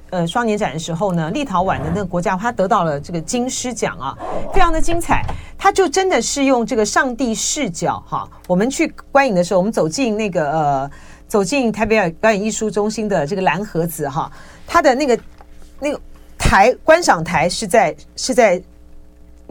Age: 40-59